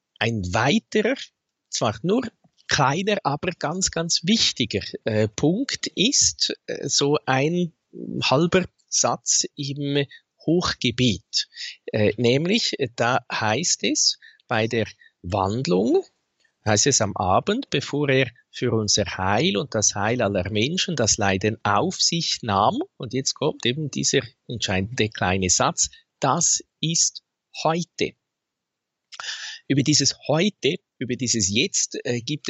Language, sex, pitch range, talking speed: German, male, 120-170 Hz, 120 wpm